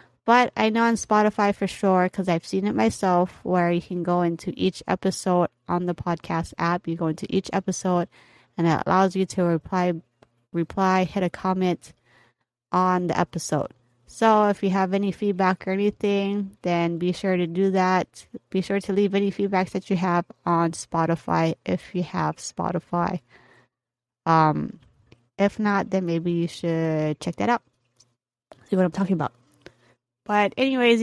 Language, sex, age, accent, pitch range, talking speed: English, female, 20-39, American, 165-205 Hz, 170 wpm